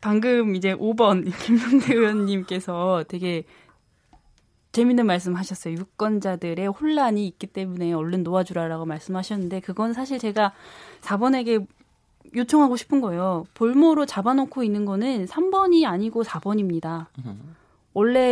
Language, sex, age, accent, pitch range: Korean, female, 20-39, native, 190-255 Hz